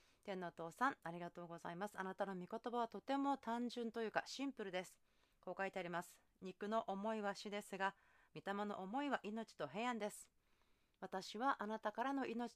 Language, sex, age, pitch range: Japanese, female, 40-59, 170-240 Hz